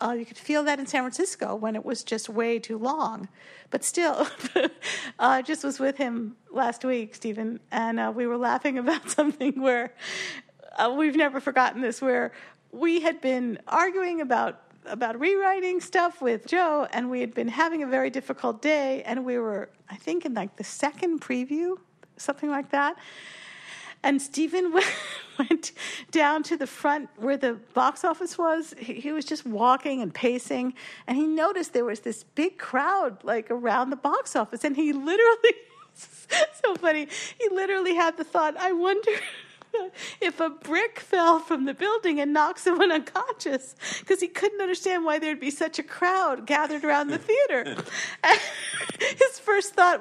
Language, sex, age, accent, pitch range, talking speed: English, female, 50-69, American, 255-340 Hz, 175 wpm